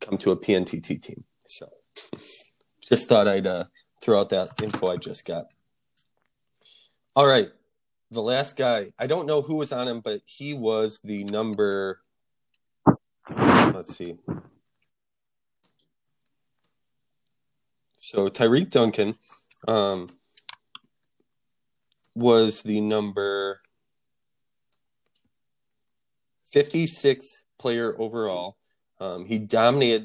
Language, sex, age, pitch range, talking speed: English, male, 20-39, 105-135 Hz, 100 wpm